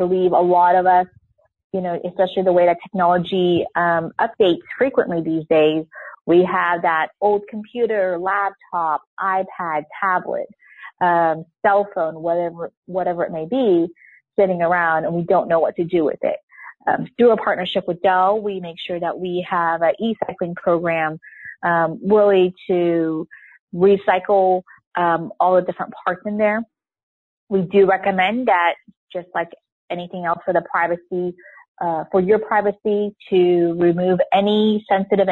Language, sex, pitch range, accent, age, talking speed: English, female, 165-190 Hz, American, 30-49, 155 wpm